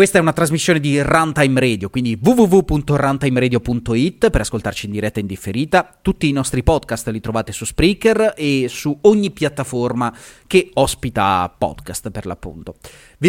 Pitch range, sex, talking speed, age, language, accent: 110-140 Hz, male, 155 wpm, 30-49, Italian, native